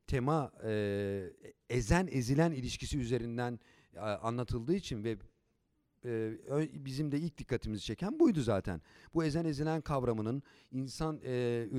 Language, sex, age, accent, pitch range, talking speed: Turkish, male, 50-69, native, 115-150 Hz, 120 wpm